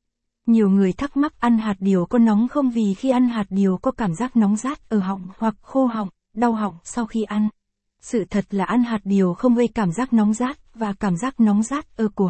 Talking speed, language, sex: 240 wpm, Vietnamese, female